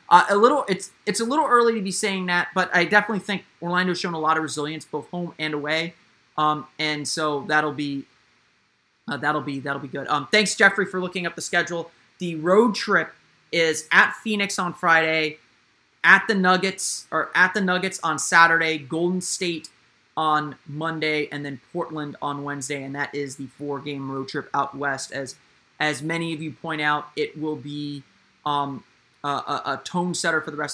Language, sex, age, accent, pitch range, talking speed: English, male, 30-49, American, 145-180 Hz, 195 wpm